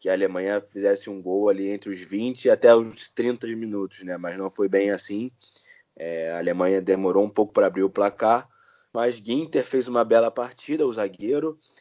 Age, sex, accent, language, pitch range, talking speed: 20-39, male, Brazilian, Portuguese, 100-135 Hz, 200 wpm